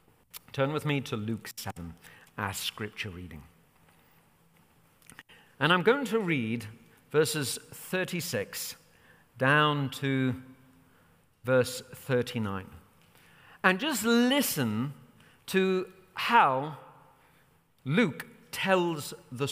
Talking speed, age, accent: 85 wpm, 50-69, British